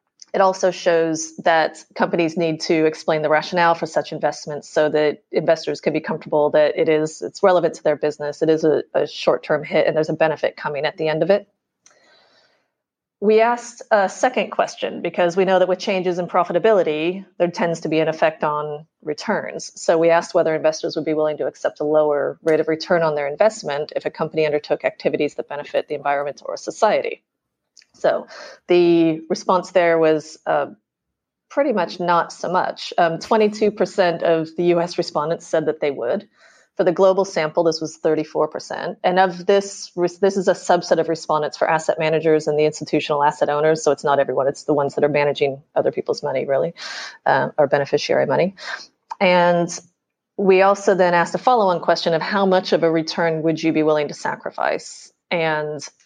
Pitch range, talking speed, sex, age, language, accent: 155-185 Hz, 195 wpm, female, 30-49, English, American